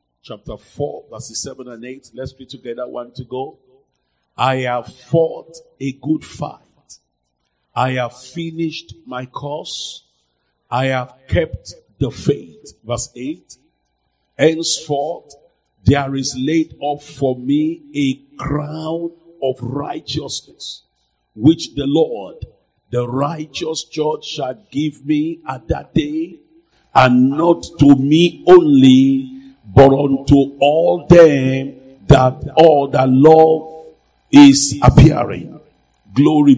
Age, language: 50-69, English